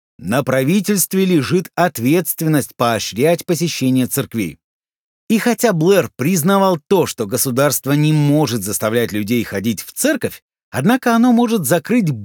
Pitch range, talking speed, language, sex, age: 135-210 Hz, 120 wpm, Russian, male, 50-69